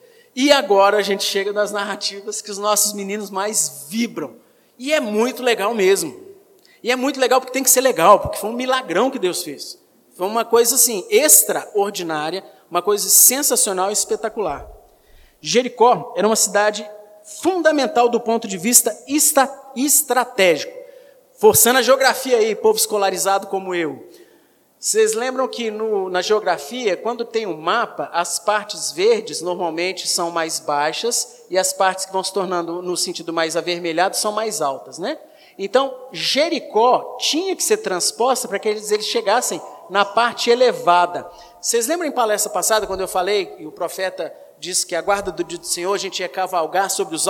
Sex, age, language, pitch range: male, 50-69, Portuguese, 190-270 Hz